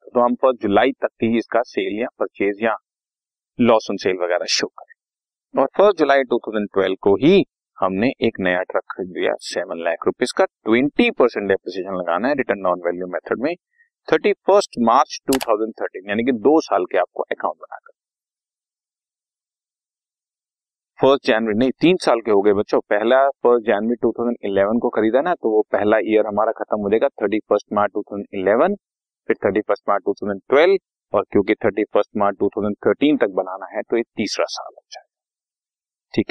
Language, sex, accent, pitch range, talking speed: Hindi, male, native, 105-175 Hz, 130 wpm